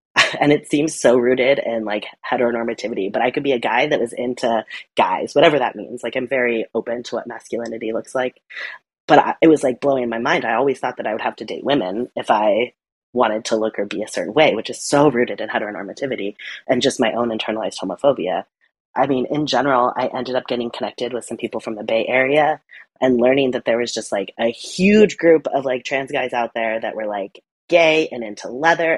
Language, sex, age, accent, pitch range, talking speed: English, female, 30-49, American, 115-145 Hz, 225 wpm